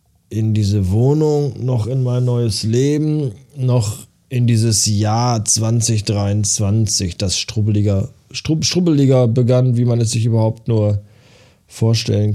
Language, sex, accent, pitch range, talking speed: German, male, German, 100-125 Hz, 110 wpm